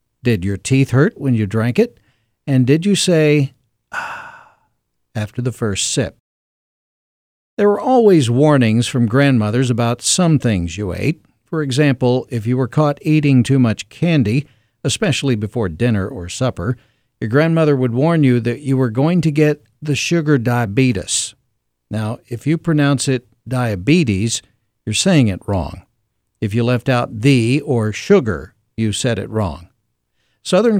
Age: 60-79